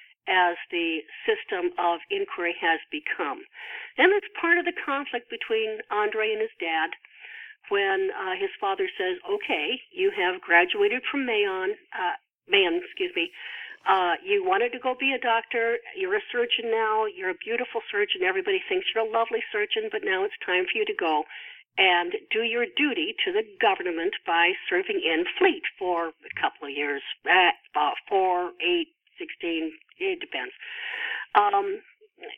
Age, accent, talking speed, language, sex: 50-69, American, 160 wpm, English, female